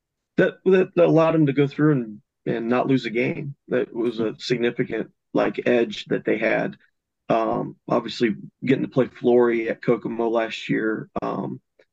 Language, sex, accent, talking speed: English, male, American, 165 wpm